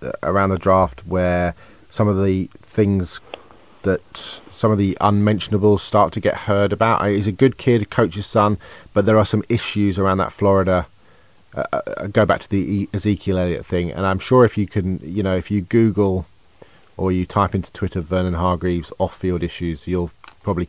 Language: English